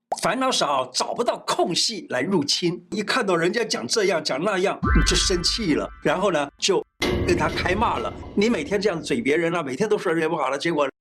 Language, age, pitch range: Chinese, 50-69, 165-230 Hz